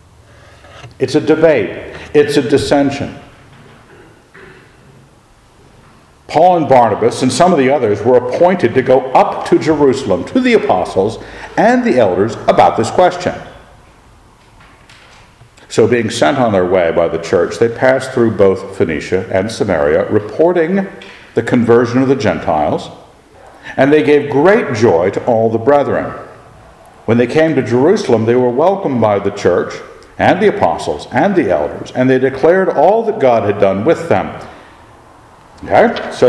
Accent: American